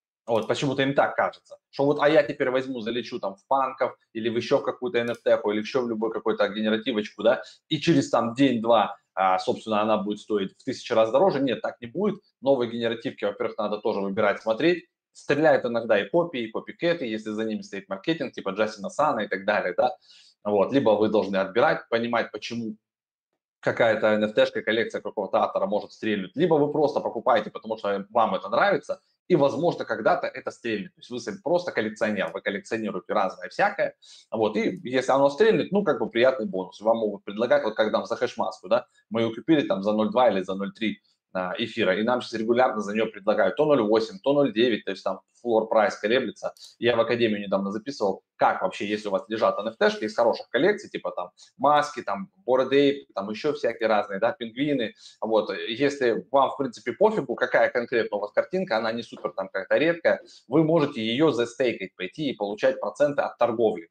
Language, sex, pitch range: Russian, male, 110-145 Hz